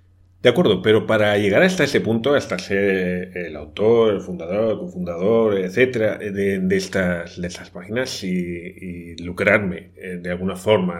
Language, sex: Spanish, male